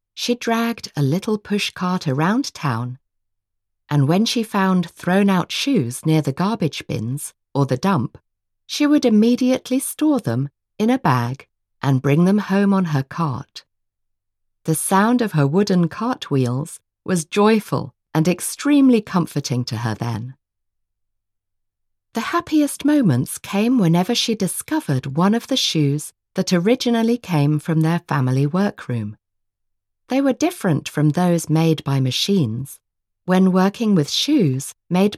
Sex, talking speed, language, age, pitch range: female, 135 wpm, Slovak, 40-59, 125-200 Hz